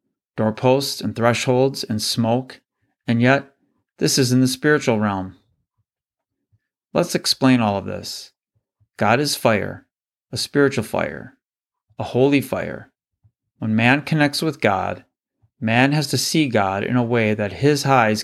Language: English